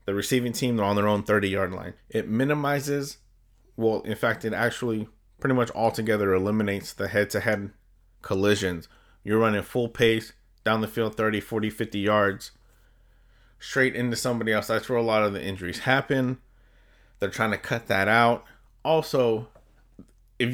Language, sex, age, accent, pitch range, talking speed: English, male, 30-49, American, 105-130 Hz, 160 wpm